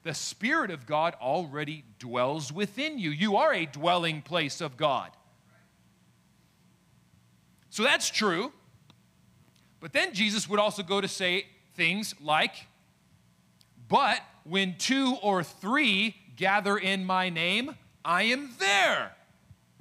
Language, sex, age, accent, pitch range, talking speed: English, male, 40-59, American, 165-245 Hz, 120 wpm